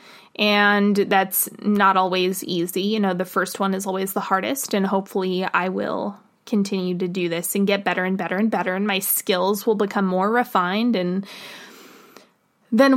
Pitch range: 195-240 Hz